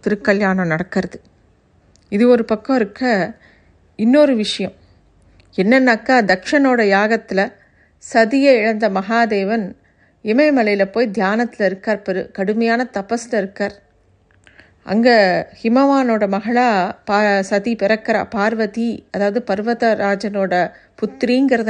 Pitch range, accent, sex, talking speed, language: 195-240 Hz, native, female, 85 wpm, Tamil